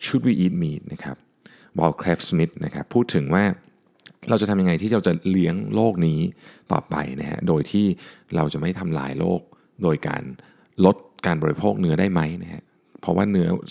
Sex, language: male, Thai